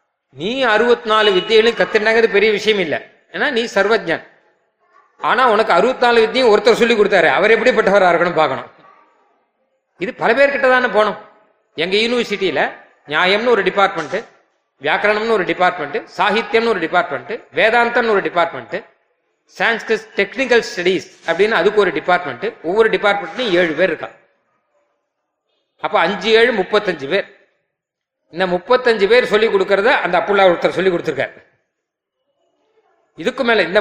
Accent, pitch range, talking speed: native, 185-230 Hz, 35 wpm